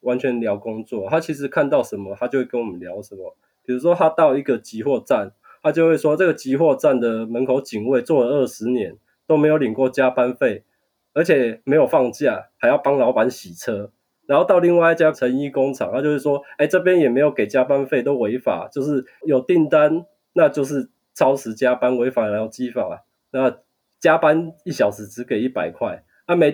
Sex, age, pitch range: male, 20-39, 120-155 Hz